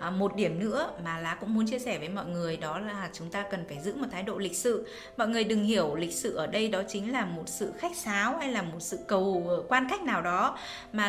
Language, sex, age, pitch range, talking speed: Vietnamese, female, 20-39, 195-245 Hz, 265 wpm